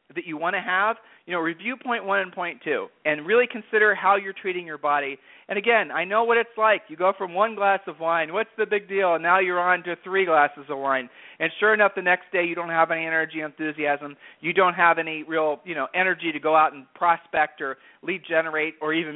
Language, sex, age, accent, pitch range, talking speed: English, male, 40-59, American, 160-215 Hz, 240 wpm